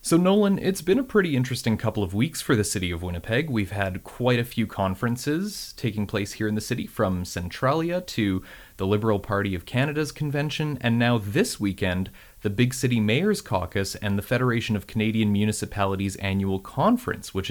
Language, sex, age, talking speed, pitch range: English, male, 30-49, 185 wpm, 95-125 Hz